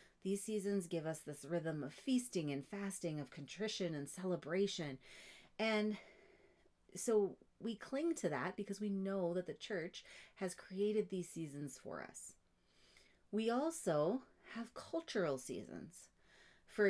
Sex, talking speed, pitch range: female, 135 wpm, 170-210 Hz